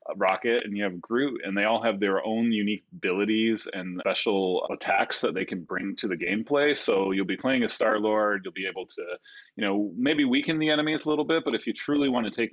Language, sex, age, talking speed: English, male, 30-49, 245 wpm